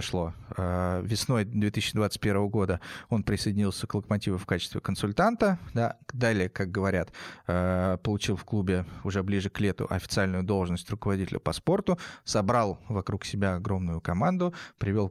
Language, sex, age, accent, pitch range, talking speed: Russian, male, 20-39, native, 95-110 Hz, 125 wpm